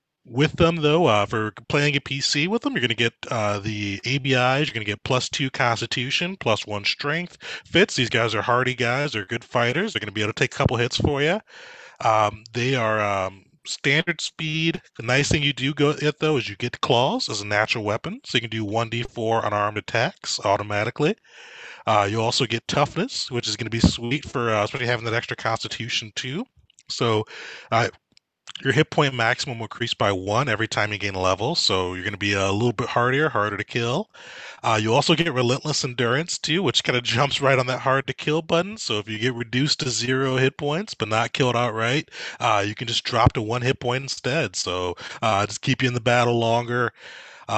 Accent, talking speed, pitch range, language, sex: American, 220 wpm, 105-135 Hz, English, male